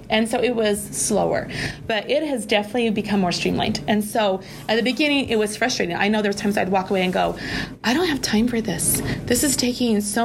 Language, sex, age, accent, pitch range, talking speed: English, female, 30-49, American, 190-230 Hz, 230 wpm